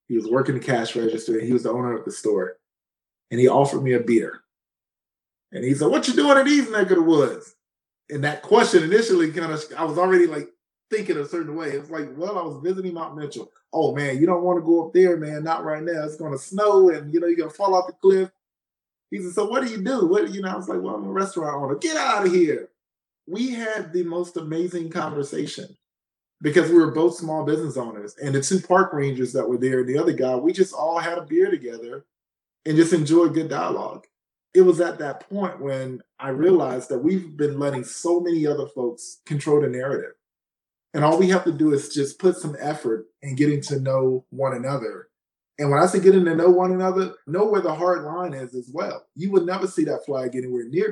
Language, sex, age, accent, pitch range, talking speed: English, male, 20-39, American, 140-195 Hz, 235 wpm